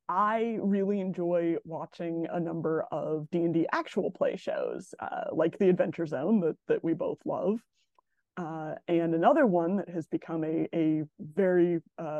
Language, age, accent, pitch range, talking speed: English, 20-39, American, 165-195 Hz, 155 wpm